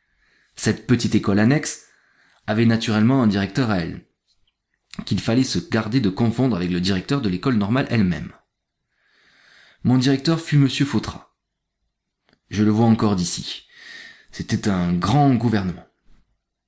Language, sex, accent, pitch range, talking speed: French, male, French, 100-130 Hz, 135 wpm